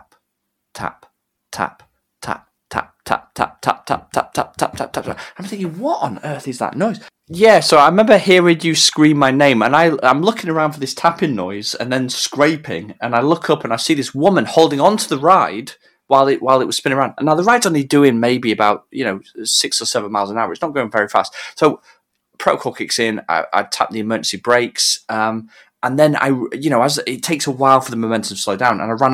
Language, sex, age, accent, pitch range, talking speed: English, male, 20-39, British, 115-170 Hz, 235 wpm